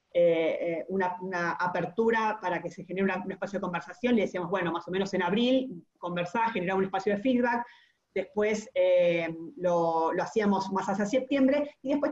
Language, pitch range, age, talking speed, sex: Spanish, 185-240 Hz, 30-49, 185 wpm, female